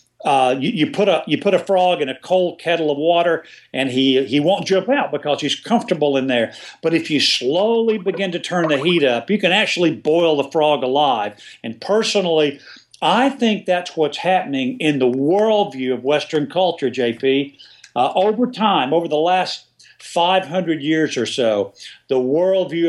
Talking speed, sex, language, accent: 195 wpm, male, English, American